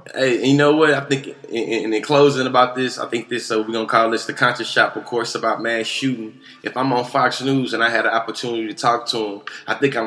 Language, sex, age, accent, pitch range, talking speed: English, male, 20-39, American, 120-145 Hz, 275 wpm